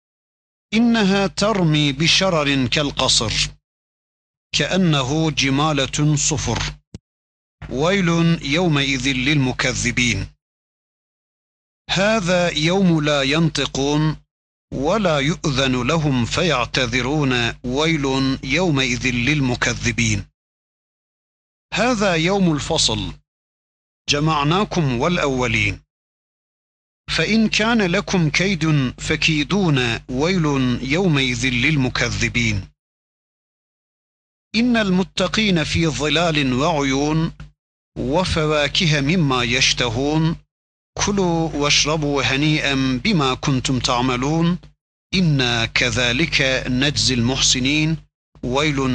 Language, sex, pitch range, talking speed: Turkish, male, 125-165 Hz, 65 wpm